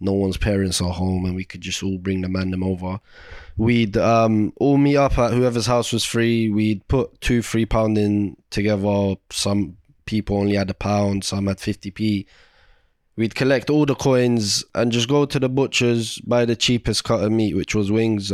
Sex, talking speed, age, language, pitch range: male, 200 wpm, 20-39, English, 100-120 Hz